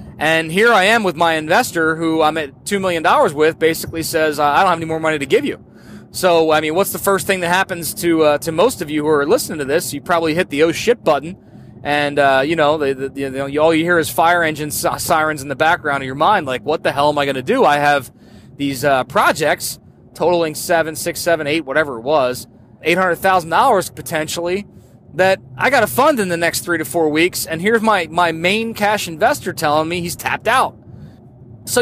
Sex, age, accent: male, 30-49, American